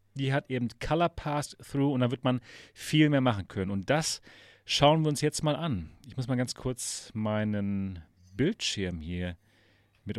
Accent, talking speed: German, 175 wpm